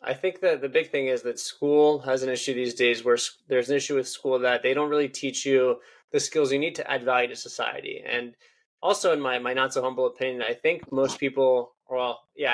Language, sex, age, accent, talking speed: English, male, 20-39, American, 240 wpm